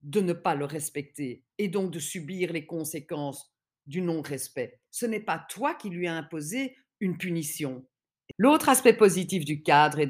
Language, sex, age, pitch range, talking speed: French, female, 50-69, 165-225 Hz, 170 wpm